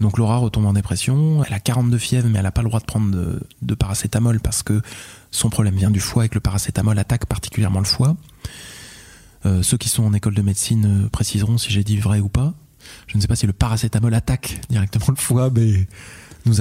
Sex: male